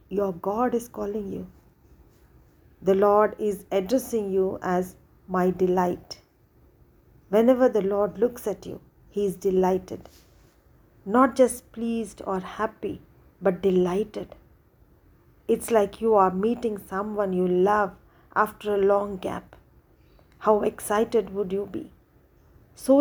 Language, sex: English, female